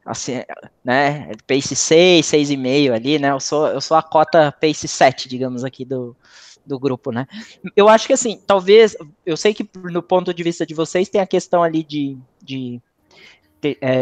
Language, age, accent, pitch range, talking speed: Portuguese, 20-39, Brazilian, 140-185 Hz, 175 wpm